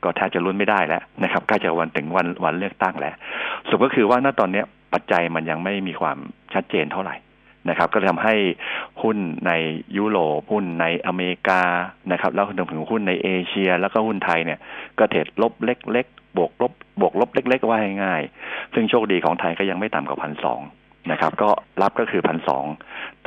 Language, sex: Thai, male